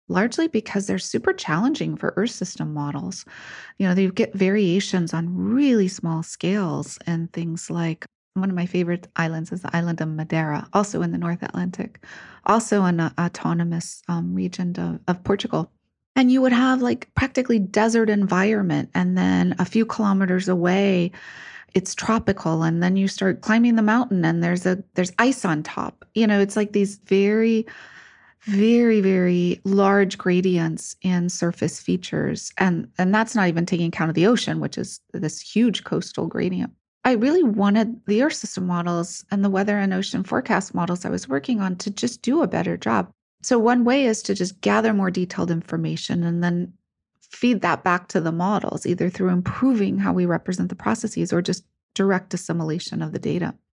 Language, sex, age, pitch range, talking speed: English, female, 30-49, 175-215 Hz, 180 wpm